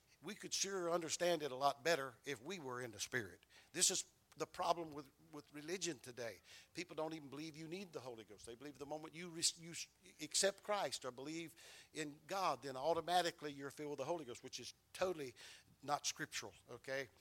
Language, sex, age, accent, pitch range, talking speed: English, male, 50-69, American, 140-195 Hz, 200 wpm